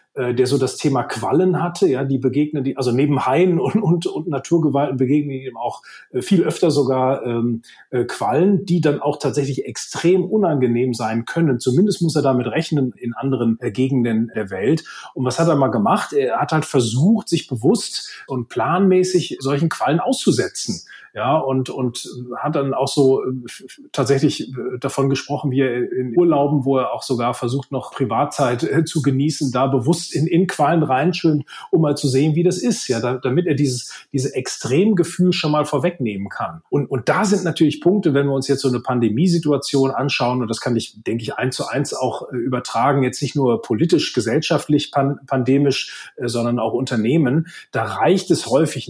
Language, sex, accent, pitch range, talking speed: German, male, German, 130-165 Hz, 180 wpm